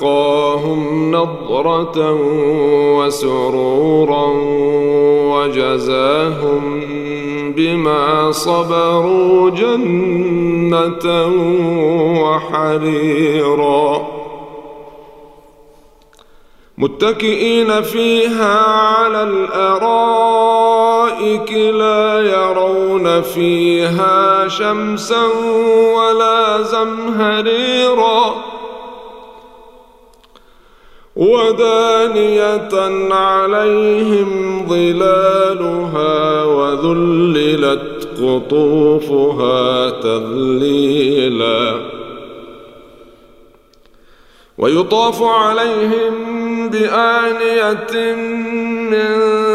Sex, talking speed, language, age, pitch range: male, 35 wpm, Arabic, 40-59, 145-215 Hz